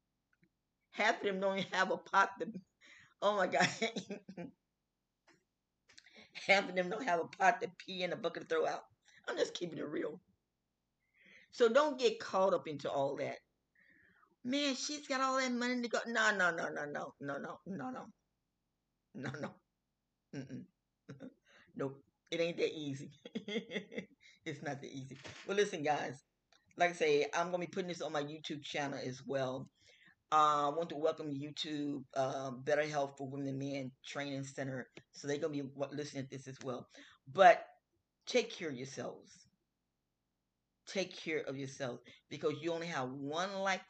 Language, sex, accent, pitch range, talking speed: English, female, American, 140-195 Hz, 175 wpm